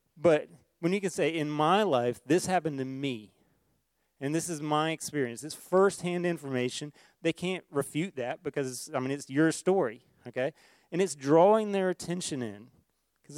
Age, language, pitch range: 30-49, English, 135-170 Hz